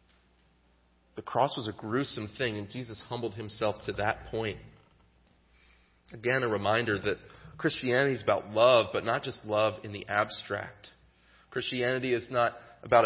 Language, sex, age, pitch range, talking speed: English, male, 30-49, 95-115 Hz, 145 wpm